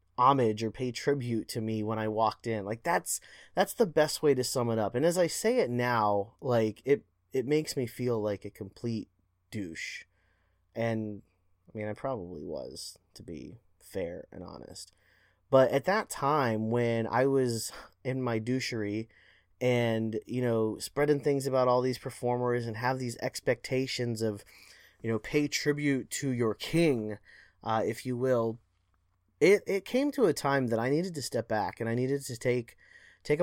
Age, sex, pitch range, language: 20-39, male, 110-140 Hz, English